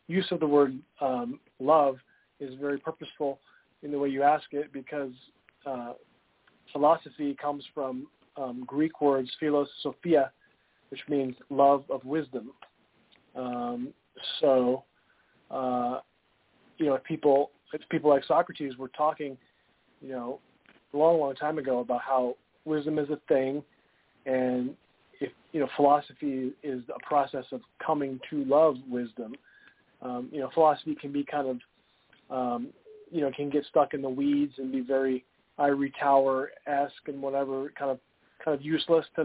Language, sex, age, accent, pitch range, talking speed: English, male, 40-59, American, 130-150 Hz, 150 wpm